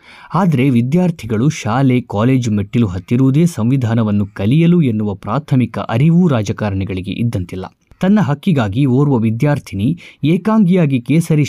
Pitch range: 105-150 Hz